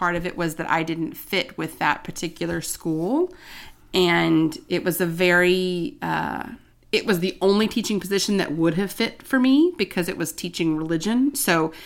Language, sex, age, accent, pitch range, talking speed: English, female, 30-49, American, 160-190 Hz, 180 wpm